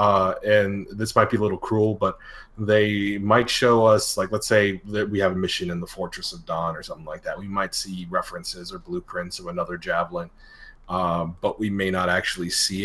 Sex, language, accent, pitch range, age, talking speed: male, English, American, 95-110 Hz, 30-49, 215 wpm